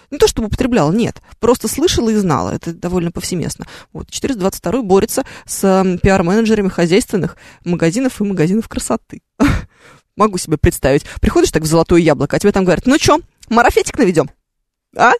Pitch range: 160-225 Hz